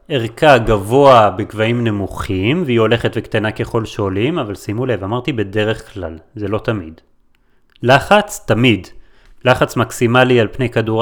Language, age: Hebrew, 30-49